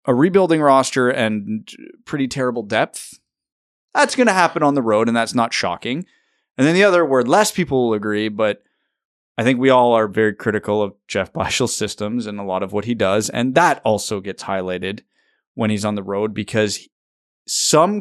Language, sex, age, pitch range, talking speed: English, male, 20-39, 105-130 Hz, 195 wpm